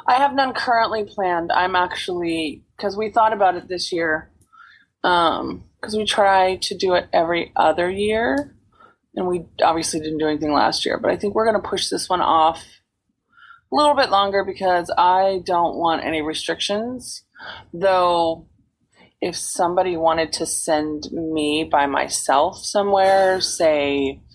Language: English